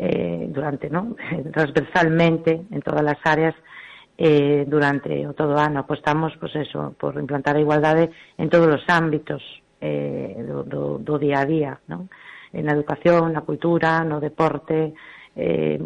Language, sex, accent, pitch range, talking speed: Spanish, female, Spanish, 145-165 Hz, 150 wpm